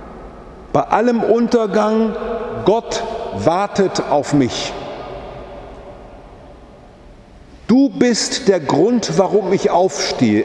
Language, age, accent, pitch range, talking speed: German, 50-69, German, 150-235 Hz, 80 wpm